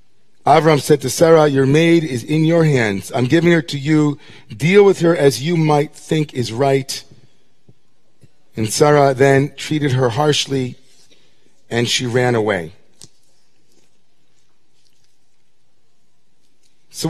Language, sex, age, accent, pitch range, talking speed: English, male, 40-59, American, 135-170 Hz, 125 wpm